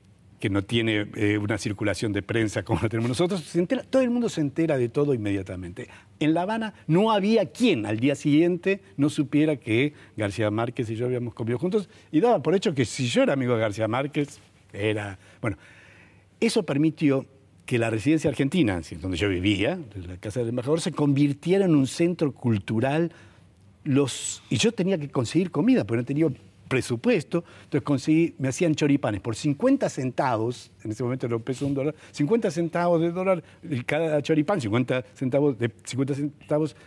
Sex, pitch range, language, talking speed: male, 110-160 Hz, Spanish, 180 wpm